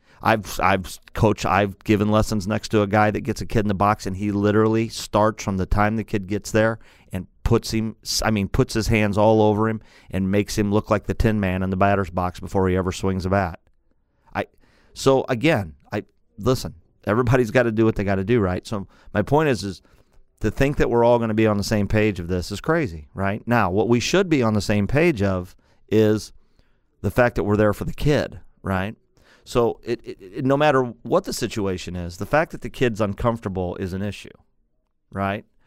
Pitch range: 95-115 Hz